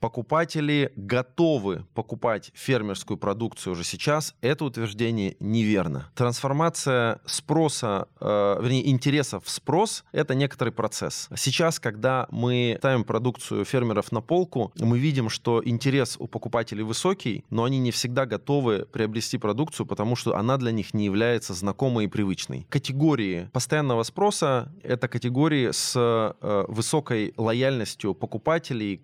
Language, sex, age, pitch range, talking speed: Russian, male, 20-39, 105-135 Hz, 130 wpm